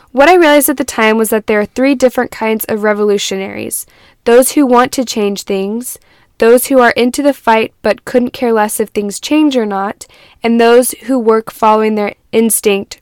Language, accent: English, American